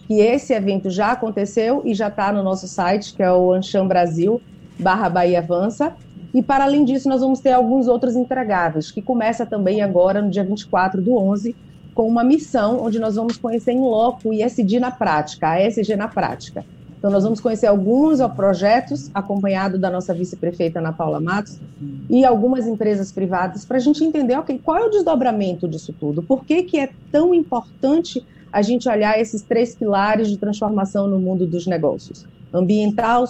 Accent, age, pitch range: Brazilian, 40-59, 190-240 Hz